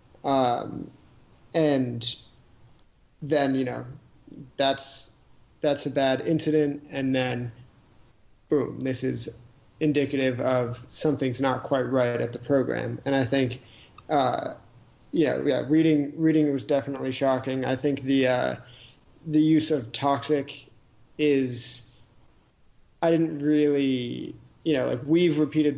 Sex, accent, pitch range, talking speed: male, American, 125-145 Hz, 120 wpm